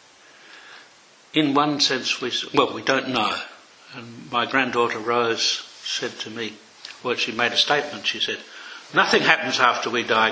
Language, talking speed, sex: English, 155 wpm, male